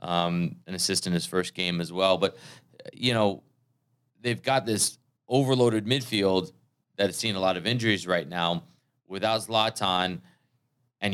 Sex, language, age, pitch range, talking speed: male, English, 30-49, 95-115 Hz, 150 wpm